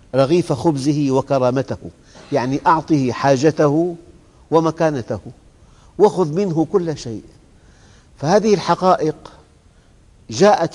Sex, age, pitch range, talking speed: male, 50-69, 115-165 Hz, 80 wpm